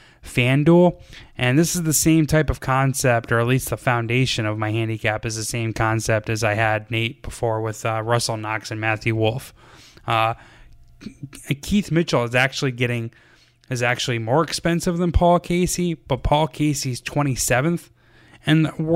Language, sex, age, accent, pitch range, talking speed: English, male, 10-29, American, 120-150 Hz, 160 wpm